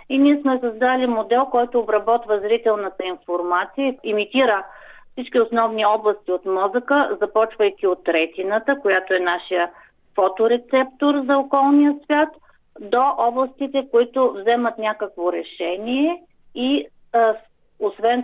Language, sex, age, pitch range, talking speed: Bulgarian, female, 50-69, 205-260 Hz, 110 wpm